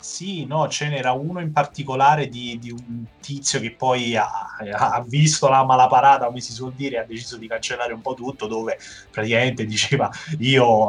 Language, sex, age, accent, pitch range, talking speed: Italian, male, 20-39, native, 115-145 Hz, 180 wpm